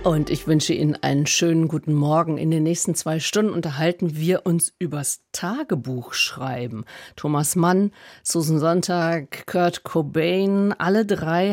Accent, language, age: German, German, 50-69